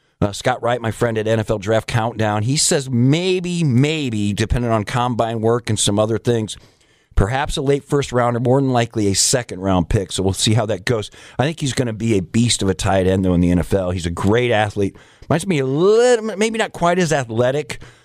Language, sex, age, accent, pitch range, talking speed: English, male, 50-69, American, 105-135 Hz, 225 wpm